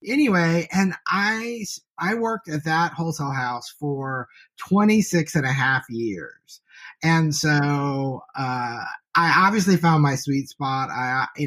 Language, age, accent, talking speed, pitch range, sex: English, 30-49, American, 135 wpm, 135-175 Hz, male